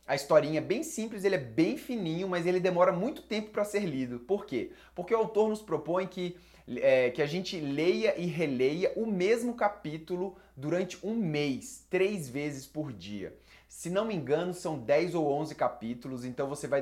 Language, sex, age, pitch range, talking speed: Portuguese, male, 20-39, 140-185 Hz, 190 wpm